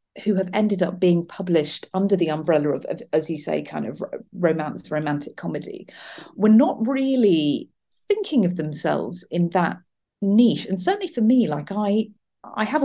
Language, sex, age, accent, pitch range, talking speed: English, female, 40-59, British, 165-215 Hz, 170 wpm